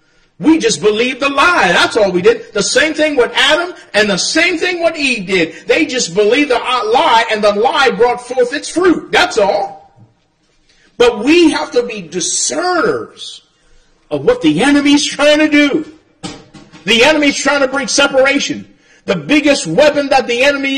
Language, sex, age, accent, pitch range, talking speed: English, male, 50-69, American, 210-285 Hz, 175 wpm